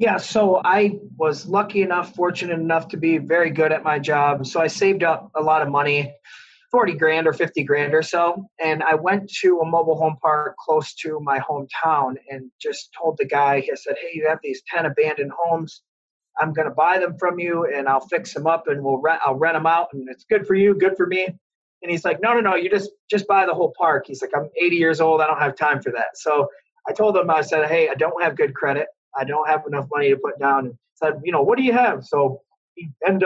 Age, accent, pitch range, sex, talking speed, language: 30-49, American, 150-190 Hz, male, 250 wpm, English